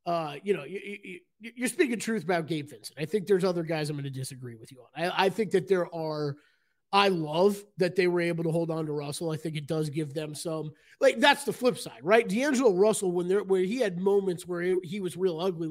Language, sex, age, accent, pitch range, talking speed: English, male, 30-49, American, 160-200 Hz, 250 wpm